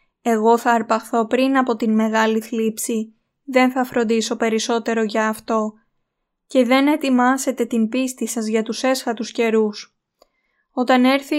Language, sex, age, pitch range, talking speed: Greek, female, 20-39, 230-265 Hz, 135 wpm